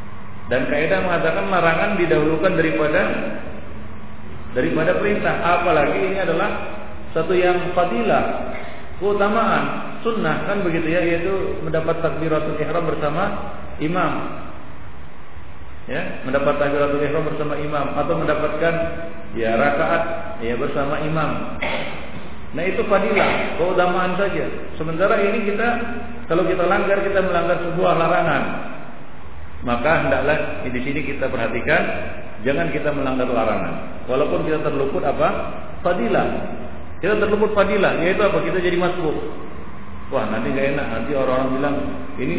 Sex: male